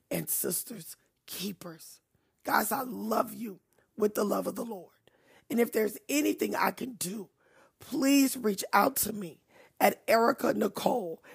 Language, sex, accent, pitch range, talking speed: English, female, American, 205-275 Hz, 150 wpm